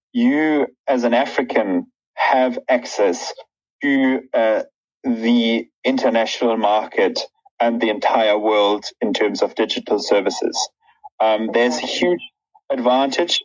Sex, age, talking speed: male, 30-49, 110 wpm